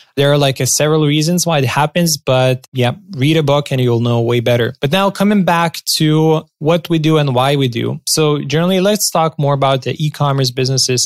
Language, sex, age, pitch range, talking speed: English, male, 20-39, 120-155 Hz, 210 wpm